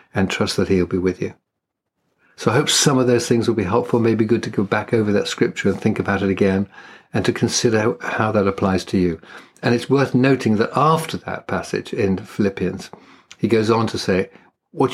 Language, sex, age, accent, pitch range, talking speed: English, male, 50-69, British, 95-120 Hz, 215 wpm